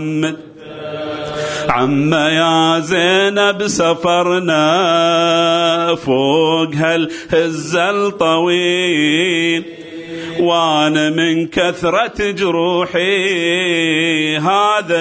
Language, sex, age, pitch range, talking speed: Arabic, male, 40-59, 160-205 Hz, 50 wpm